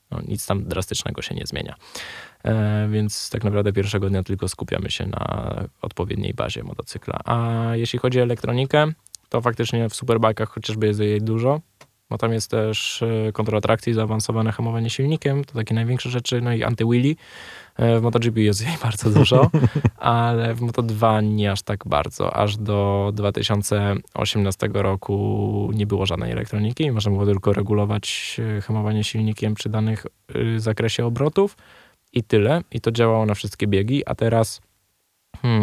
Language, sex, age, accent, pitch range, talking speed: Polish, male, 20-39, native, 105-115 Hz, 155 wpm